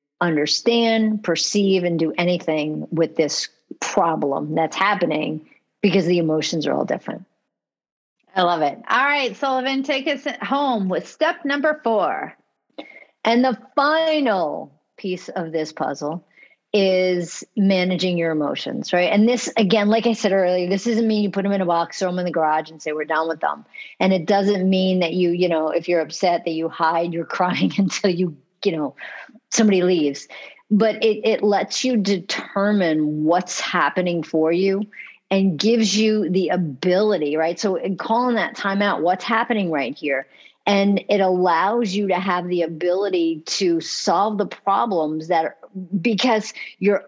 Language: English